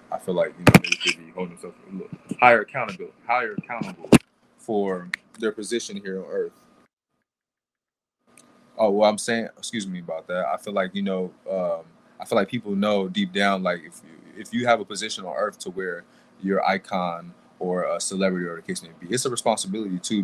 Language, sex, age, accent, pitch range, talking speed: English, male, 20-39, American, 90-115 Hz, 205 wpm